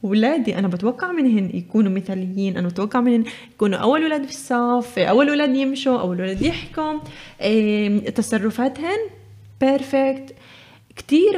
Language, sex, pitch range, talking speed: Arabic, female, 205-255 Hz, 125 wpm